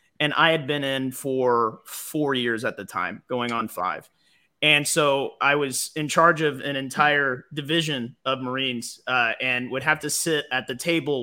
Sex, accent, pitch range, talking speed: male, American, 135-165 Hz, 185 wpm